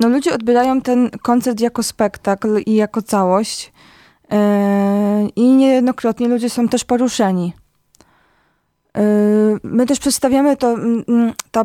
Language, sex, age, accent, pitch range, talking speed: Polish, female, 20-39, native, 220-245 Hz, 110 wpm